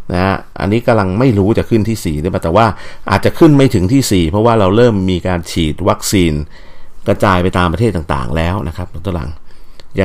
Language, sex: Thai, male